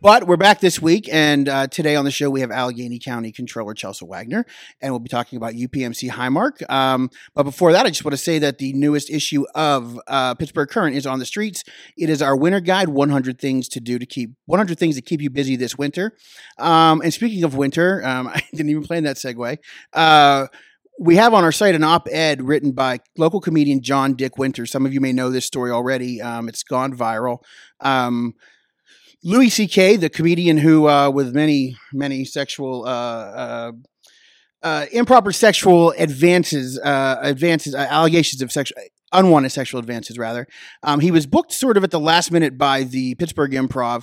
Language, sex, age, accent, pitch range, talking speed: English, male, 30-49, American, 130-165 Hz, 200 wpm